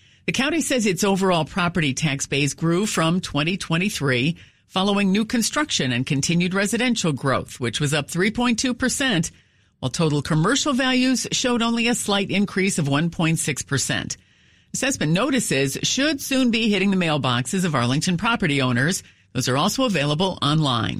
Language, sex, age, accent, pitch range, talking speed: English, female, 50-69, American, 140-210 Hz, 150 wpm